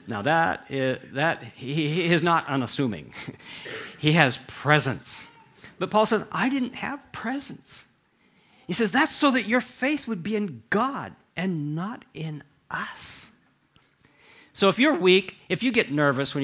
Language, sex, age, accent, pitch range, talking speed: English, male, 50-69, American, 150-220 Hz, 145 wpm